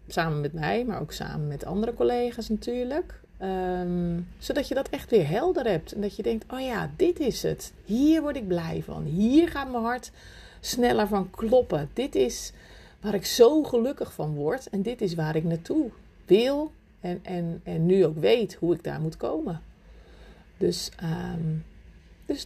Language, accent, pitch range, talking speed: Dutch, Dutch, 165-230 Hz, 175 wpm